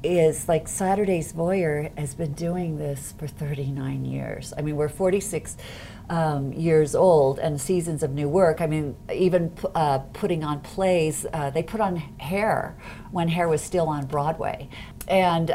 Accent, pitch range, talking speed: American, 140-170 Hz, 160 wpm